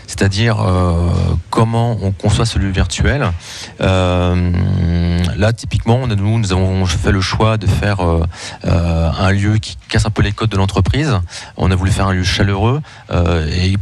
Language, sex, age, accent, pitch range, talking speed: French, male, 30-49, French, 90-110 Hz, 165 wpm